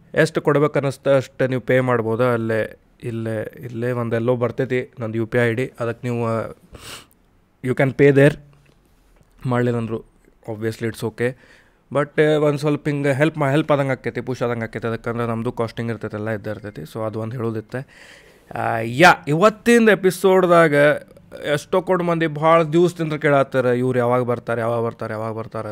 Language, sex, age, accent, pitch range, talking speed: Kannada, male, 20-39, native, 115-145 Hz, 155 wpm